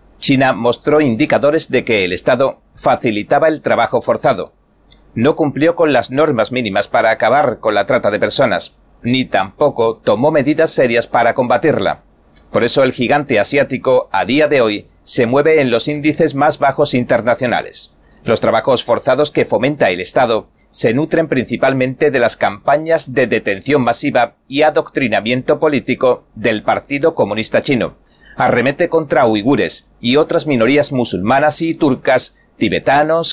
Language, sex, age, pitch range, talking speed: Spanish, male, 40-59, 125-160 Hz, 145 wpm